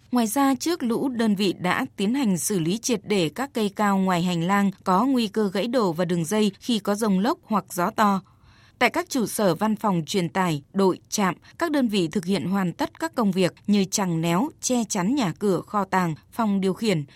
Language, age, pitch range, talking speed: Vietnamese, 20-39, 185-235 Hz, 230 wpm